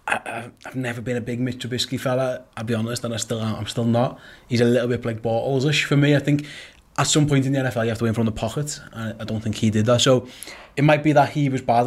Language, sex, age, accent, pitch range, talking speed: English, male, 20-39, British, 115-130 Hz, 290 wpm